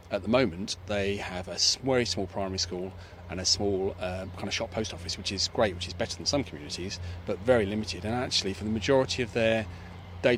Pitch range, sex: 95-115 Hz, male